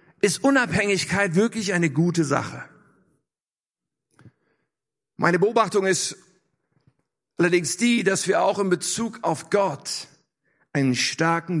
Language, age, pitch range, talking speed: German, 50-69, 175-235 Hz, 105 wpm